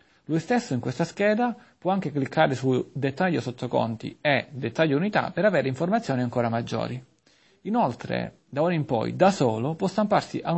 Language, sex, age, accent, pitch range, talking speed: Italian, male, 40-59, native, 125-175 Hz, 160 wpm